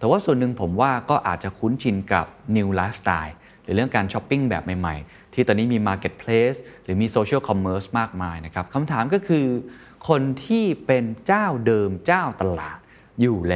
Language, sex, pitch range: Thai, male, 95-125 Hz